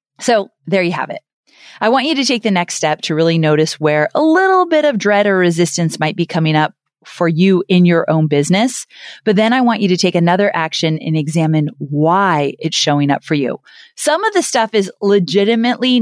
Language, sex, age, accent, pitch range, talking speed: English, female, 30-49, American, 160-205 Hz, 215 wpm